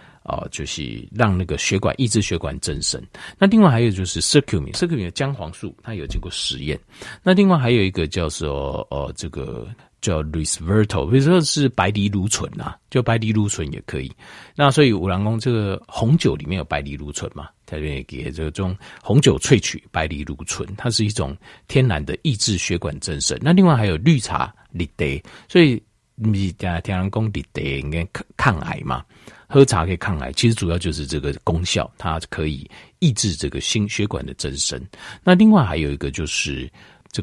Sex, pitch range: male, 80-135 Hz